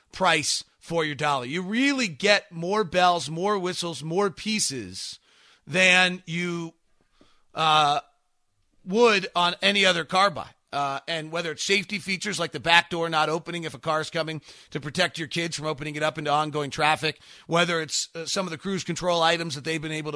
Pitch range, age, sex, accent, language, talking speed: 150-180 Hz, 40-59, male, American, English, 190 wpm